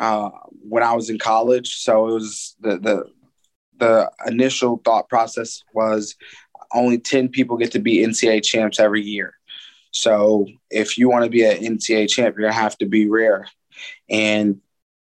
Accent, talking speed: American, 160 wpm